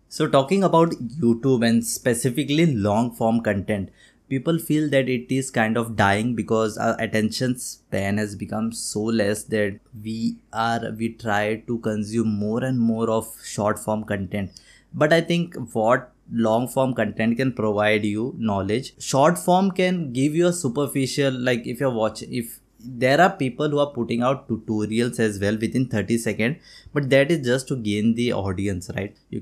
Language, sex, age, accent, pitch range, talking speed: Hindi, male, 20-39, native, 110-130 Hz, 175 wpm